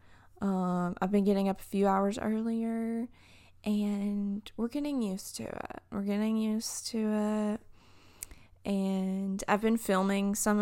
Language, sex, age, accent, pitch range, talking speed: English, female, 20-39, American, 170-210 Hz, 140 wpm